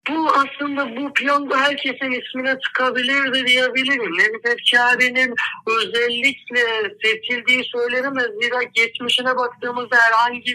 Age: 60-79